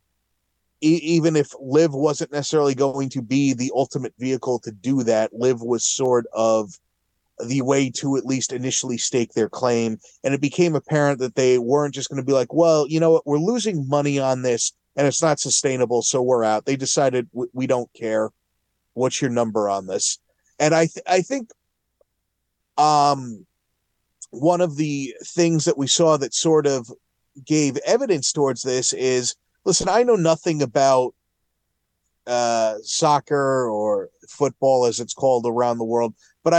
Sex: male